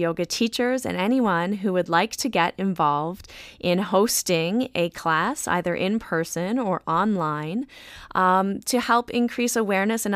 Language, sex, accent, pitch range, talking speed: English, female, American, 175-215 Hz, 150 wpm